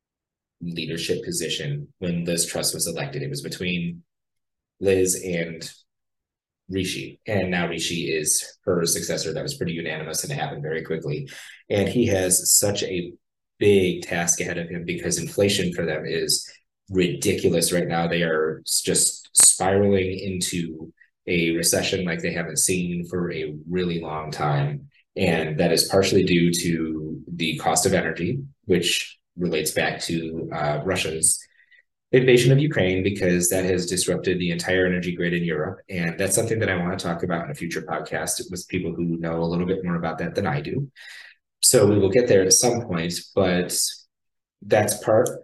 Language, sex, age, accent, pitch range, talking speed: English, male, 20-39, American, 85-95 Hz, 170 wpm